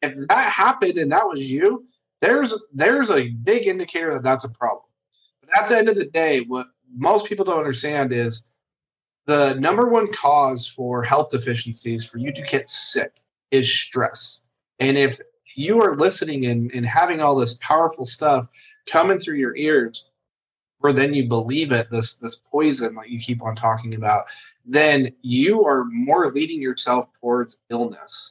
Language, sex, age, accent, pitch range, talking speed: English, male, 20-39, American, 125-150 Hz, 170 wpm